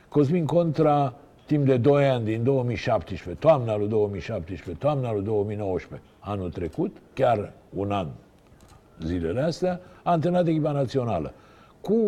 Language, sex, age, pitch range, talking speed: Romanian, male, 60-79, 105-150 Hz, 130 wpm